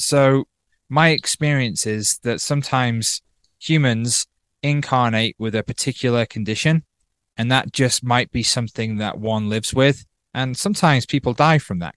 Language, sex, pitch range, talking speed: English, male, 110-135 Hz, 140 wpm